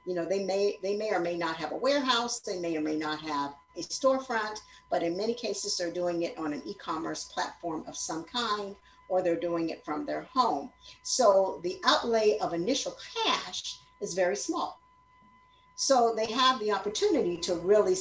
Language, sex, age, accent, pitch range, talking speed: English, female, 50-69, American, 170-275 Hz, 190 wpm